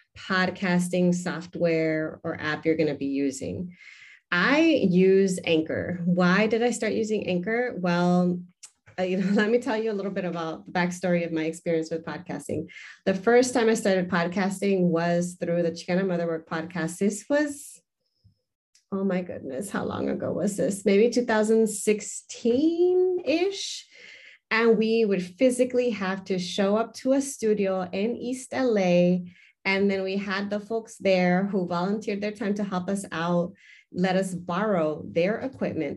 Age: 30-49